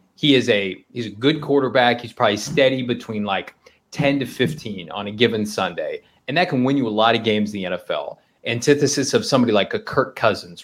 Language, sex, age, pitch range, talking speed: English, male, 30-49, 105-140 Hz, 215 wpm